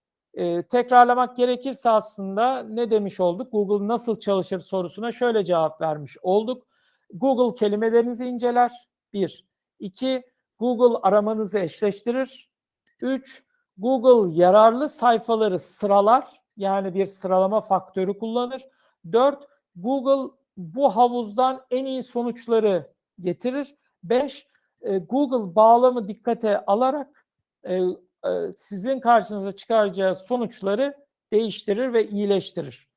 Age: 60-79